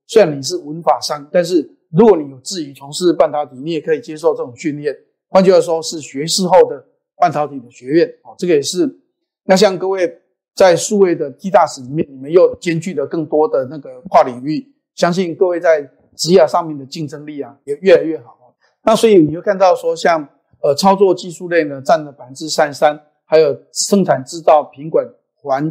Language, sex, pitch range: Chinese, male, 150-195 Hz